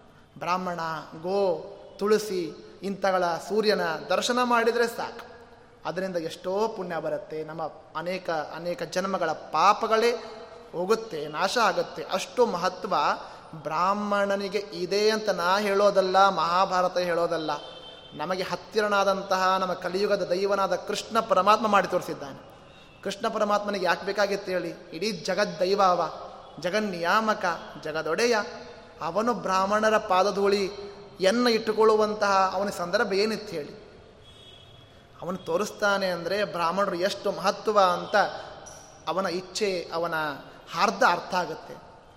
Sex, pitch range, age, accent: male, 175-205 Hz, 20-39, native